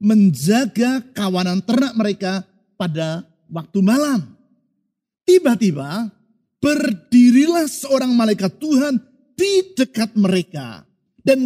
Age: 50-69